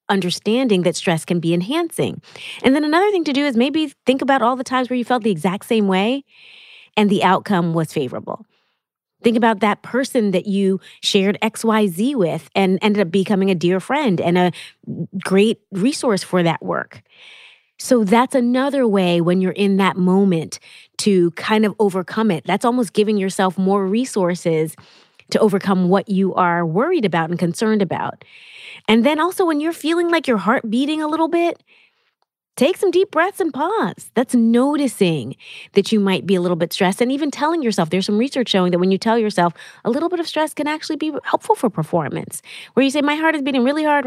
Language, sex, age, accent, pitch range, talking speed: English, female, 30-49, American, 185-265 Hz, 200 wpm